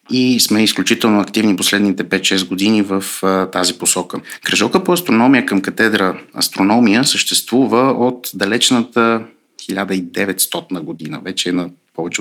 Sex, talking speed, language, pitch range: male, 120 wpm, Bulgarian, 95-120 Hz